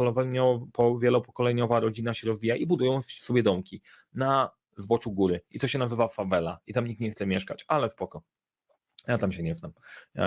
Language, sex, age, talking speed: Polish, male, 30-49, 180 wpm